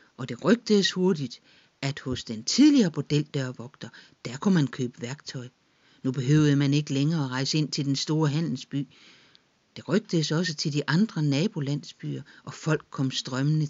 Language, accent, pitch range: Danish, native, 130-170 Hz